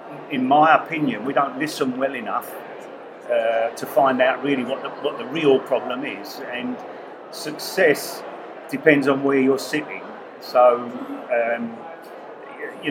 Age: 40-59